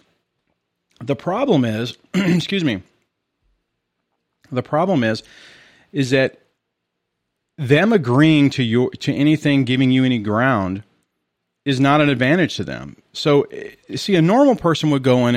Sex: male